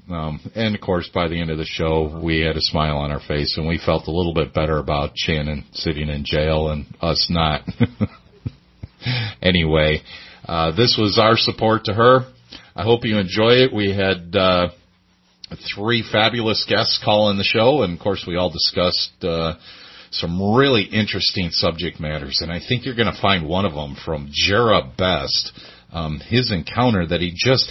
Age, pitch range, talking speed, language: 40-59, 80-105 Hz, 185 wpm, English